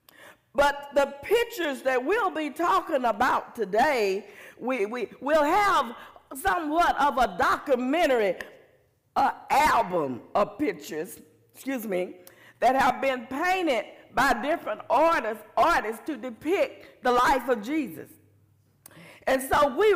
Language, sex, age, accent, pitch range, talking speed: English, female, 50-69, American, 250-325 Hz, 120 wpm